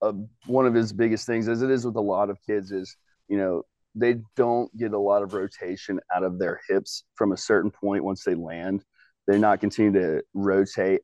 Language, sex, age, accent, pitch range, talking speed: English, male, 30-49, American, 95-110 Hz, 215 wpm